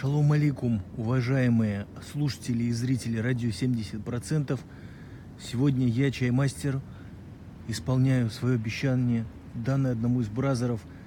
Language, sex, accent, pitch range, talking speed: Russian, male, native, 110-125 Hz, 100 wpm